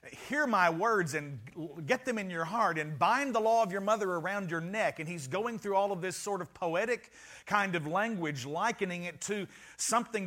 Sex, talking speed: male, 210 wpm